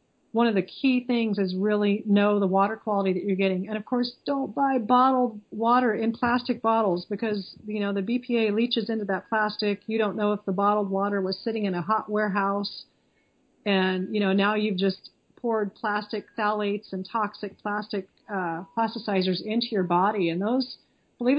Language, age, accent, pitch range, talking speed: English, 40-59, American, 195-230 Hz, 185 wpm